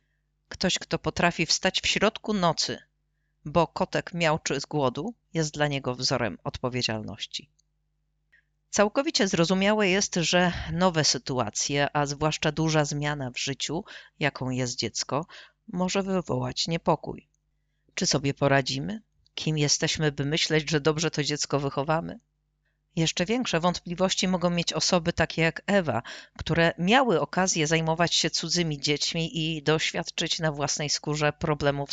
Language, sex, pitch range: Polish, female, 145-180 Hz